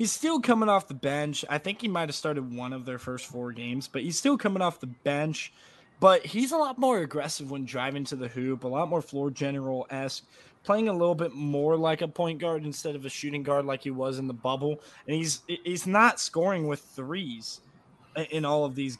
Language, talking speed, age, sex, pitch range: English, 225 wpm, 20-39, male, 130-165 Hz